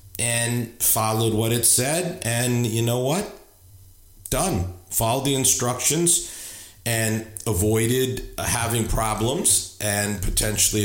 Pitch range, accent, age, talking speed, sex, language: 95-115 Hz, American, 40-59, 105 wpm, male, English